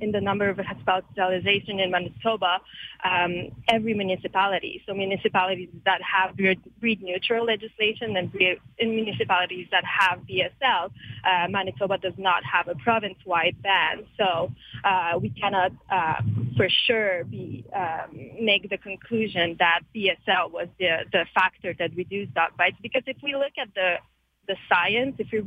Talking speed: 155 wpm